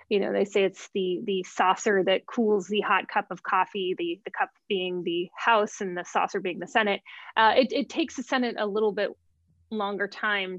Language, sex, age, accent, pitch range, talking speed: English, female, 20-39, American, 185-235 Hz, 215 wpm